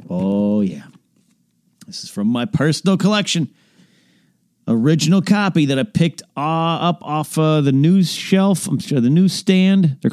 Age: 40-59